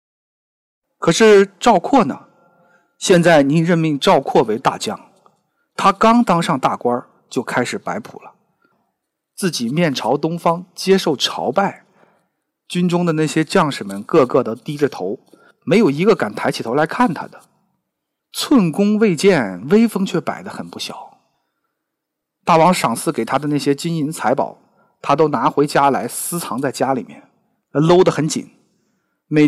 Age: 50-69